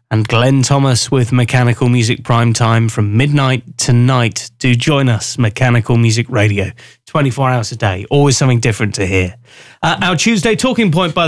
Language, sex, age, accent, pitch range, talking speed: English, male, 20-39, British, 115-145 Hz, 170 wpm